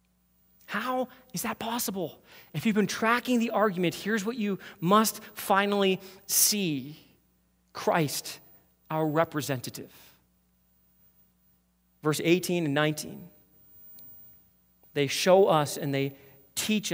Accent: American